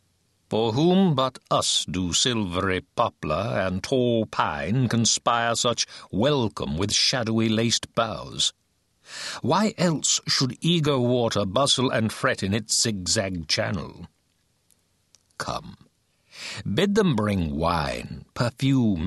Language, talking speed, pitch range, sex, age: English, 105 wpm, 95-130 Hz, male, 60-79